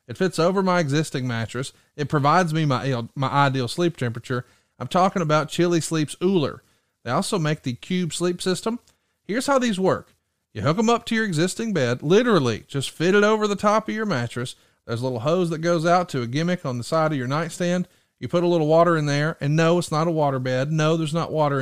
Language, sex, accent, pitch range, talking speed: English, male, American, 130-180 Hz, 235 wpm